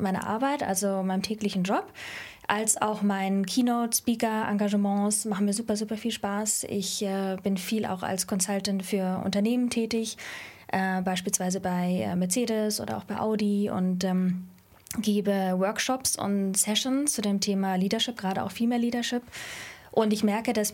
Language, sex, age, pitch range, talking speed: German, female, 20-39, 195-225 Hz, 160 wpm